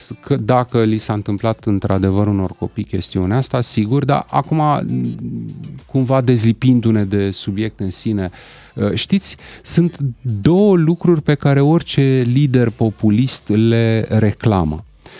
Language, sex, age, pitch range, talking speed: Romanian, male, 30-49, 100-125 Hz, 120 wpm